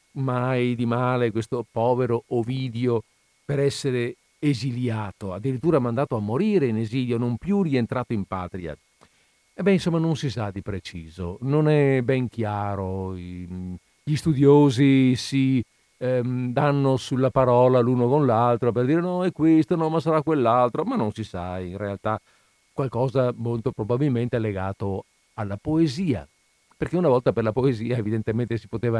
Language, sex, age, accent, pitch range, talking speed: Italian, male, 50-69, native, 110-140 Hz, 150 wpm